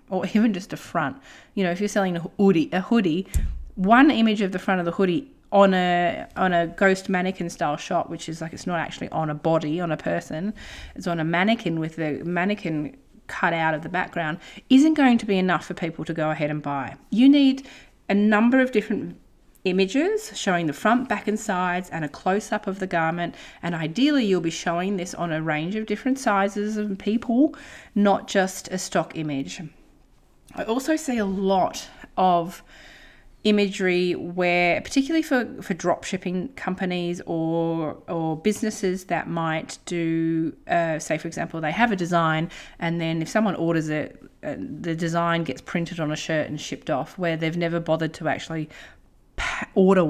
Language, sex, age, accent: English, female, 30-49, Australian